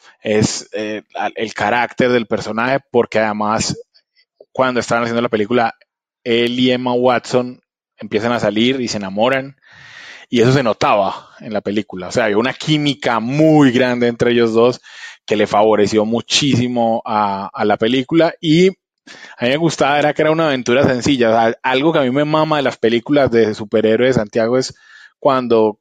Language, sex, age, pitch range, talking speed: Spanish, male, 20-39, 115-135 Hz, 170 wpm